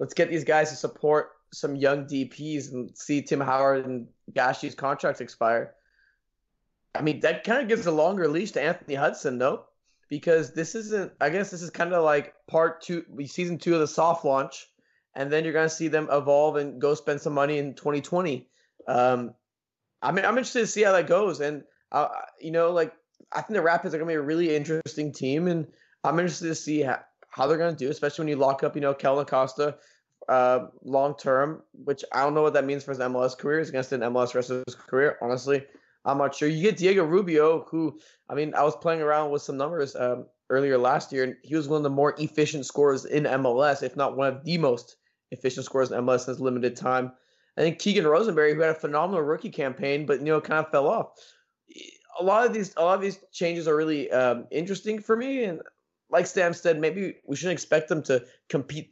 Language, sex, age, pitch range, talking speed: English, male, 20-39, 135-165 Hz, 225 wpm